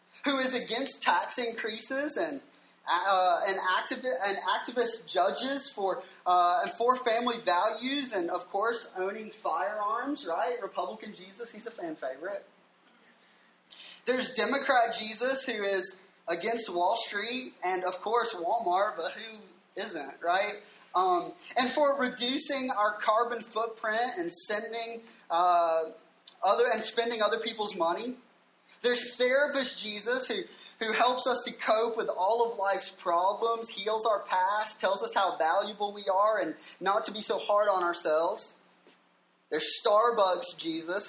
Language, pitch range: English, 195-250 Hz